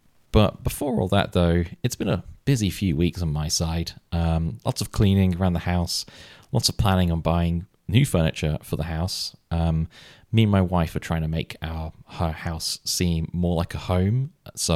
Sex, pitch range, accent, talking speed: male, 80-95 Hz, British, 200 wpm